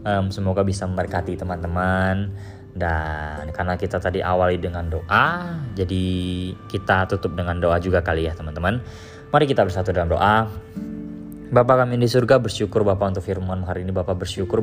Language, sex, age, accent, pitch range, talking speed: Indonesian, male, 20-39, native, 90-105 Hz, 155 wpm